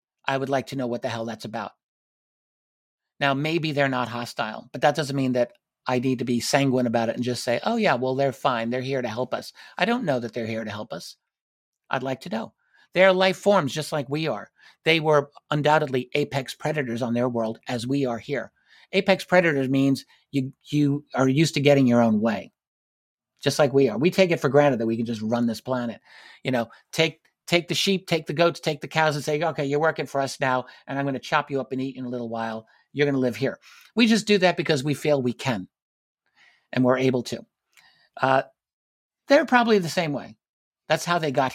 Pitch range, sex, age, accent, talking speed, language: 125-155 Hz, male, 50-69, American, 235 wpm, English